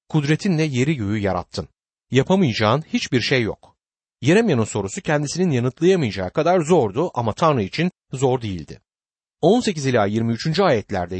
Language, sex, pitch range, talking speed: Turkish, male, 110-175 Hz, 120 wpm